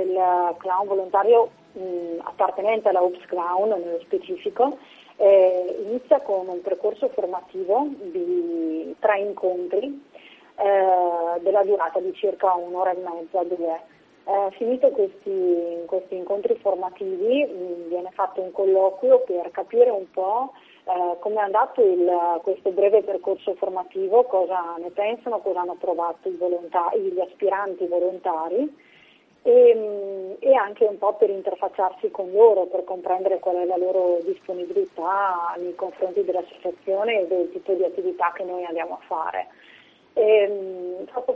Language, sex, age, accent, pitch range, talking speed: Italian, female, 30-49, native, 180-215 Hz, 135 wpm